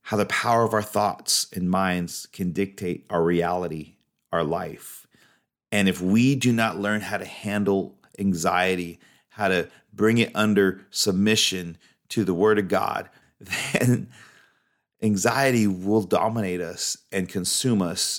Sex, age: male, 30-49